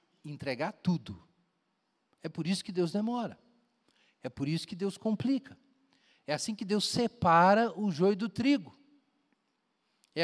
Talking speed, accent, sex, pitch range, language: 140 wpm, Brazilian, male, 175-245 Hz, Portuguese